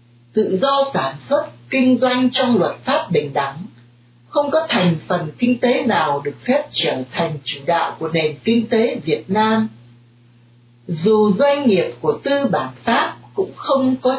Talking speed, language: 170 wpm, Vietnamese